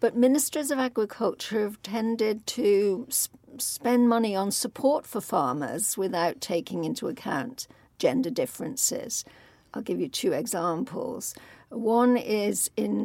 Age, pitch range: 60-79, 195-245 Hz